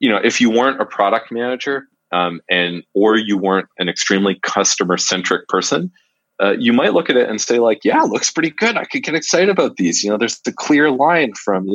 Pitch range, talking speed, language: 90-130 Hz, 235 wpm, English